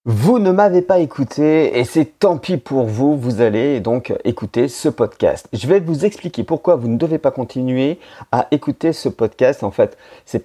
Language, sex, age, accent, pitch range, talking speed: French, male, 40-59, French, 110-145 Hz, 195 wpm